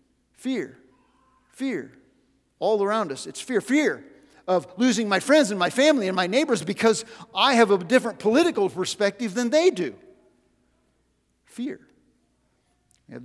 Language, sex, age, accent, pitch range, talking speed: English, male, 50-69, American, 175-250 Hz, 140 wpm